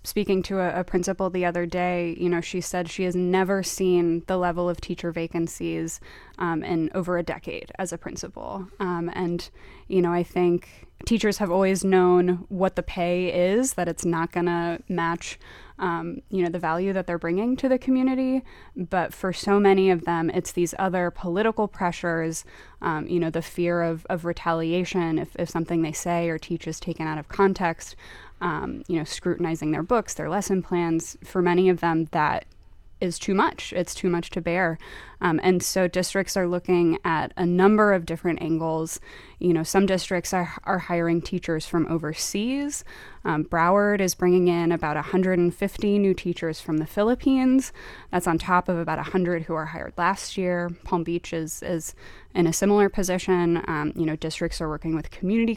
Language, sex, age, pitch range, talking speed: English, female, 20-39, 170-190 Hz, 190 wpm